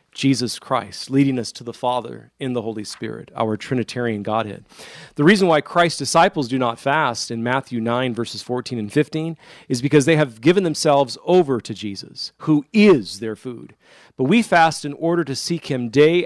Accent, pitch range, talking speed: American, 120-150 Hz, 190 wpm